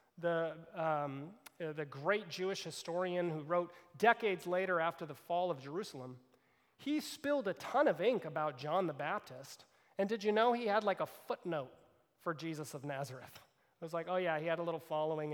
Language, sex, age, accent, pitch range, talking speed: English, male, 30-49, American, 160-210 Hz, 190 wpm